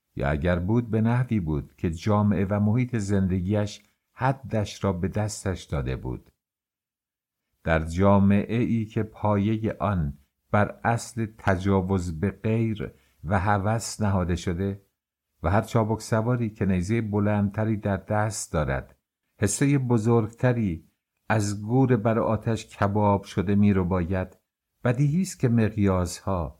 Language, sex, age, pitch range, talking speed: English, male, 50-69, 90-110 Hz, 125 wpm